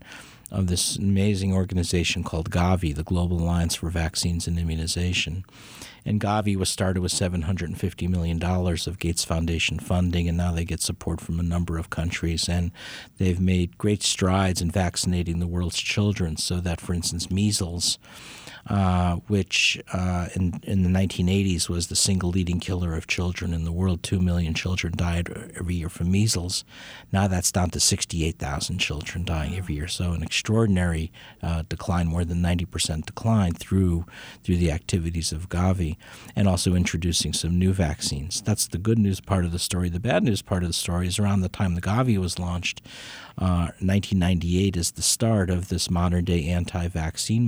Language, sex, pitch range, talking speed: English, male, 85-95 Hz, 170 wpm